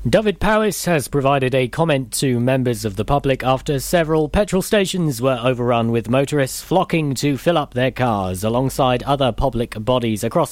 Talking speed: 170 wpm